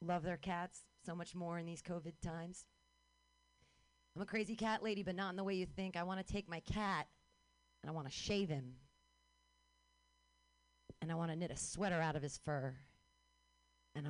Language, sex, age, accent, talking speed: English, female, 40-59, American, 195 wpm